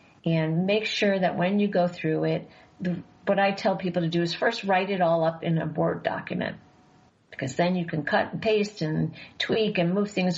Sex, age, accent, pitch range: female, 50-69, American, 170-205 Hz